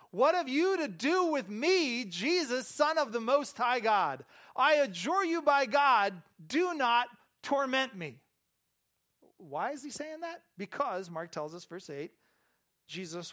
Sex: male